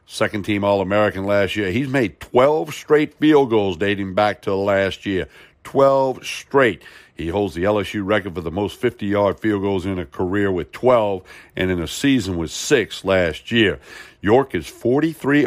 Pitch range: 95-120 Hz